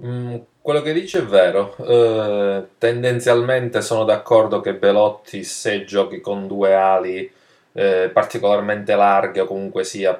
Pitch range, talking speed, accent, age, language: 95-115 Hz, 130 wpm, native, 20-39, Italian